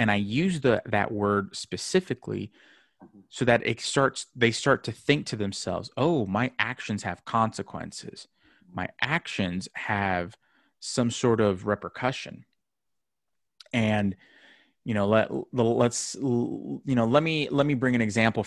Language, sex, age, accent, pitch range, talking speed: English, male, 30-49, American, 100-125 Hz, 140 wpm